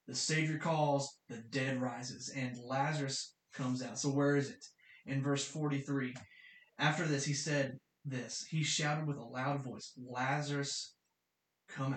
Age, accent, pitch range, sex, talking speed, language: 20-39, American, 135-160 Hz, male, 150 wpm, English